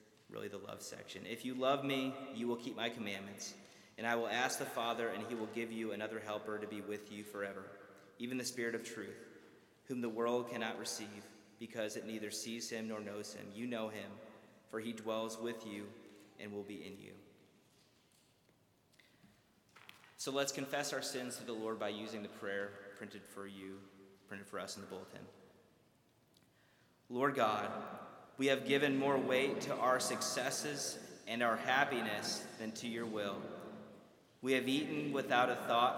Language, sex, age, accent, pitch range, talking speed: English, male, 30-49, American, 105-125 Hz, 175 wpm